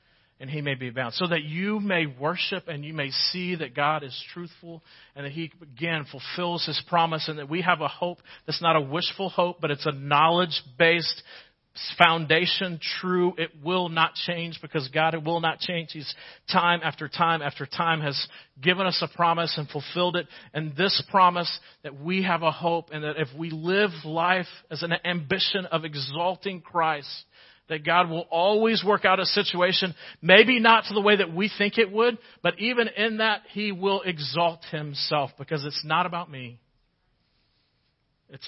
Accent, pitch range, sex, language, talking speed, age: American, 140-175 Hz, male, English, 185 wpm, 40-59